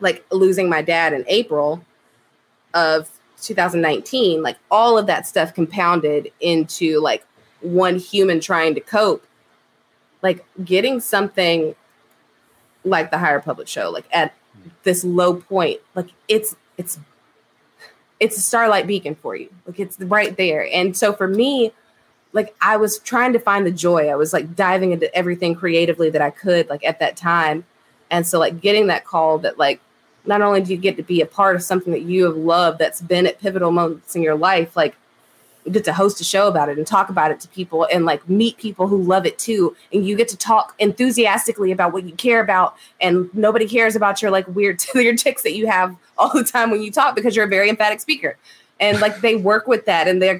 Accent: American